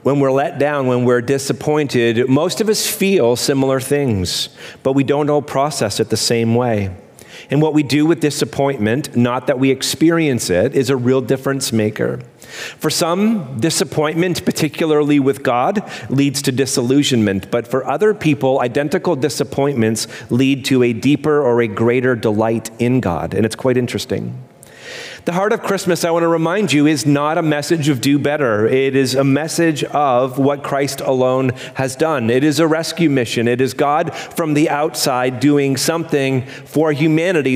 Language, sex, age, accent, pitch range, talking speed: English, male, 40-59, American, 130-160 Hz, 175 wpm